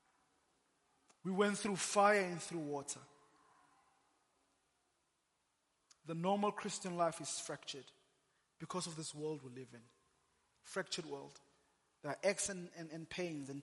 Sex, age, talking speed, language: male, 30-49, 130 wpm, English